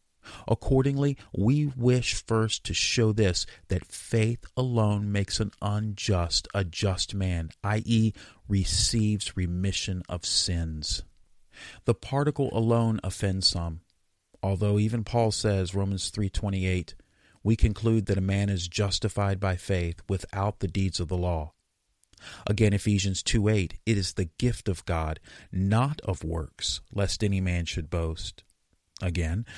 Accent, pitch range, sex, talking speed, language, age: American, 90-115 Hz, male, 130 wpm, English, 40-59